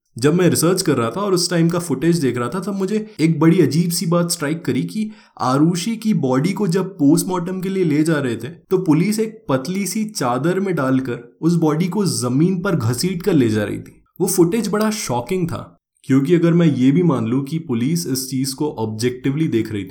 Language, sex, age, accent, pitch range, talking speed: Hindi, male, 20-39, native, 130-175 Hz, 225 wpm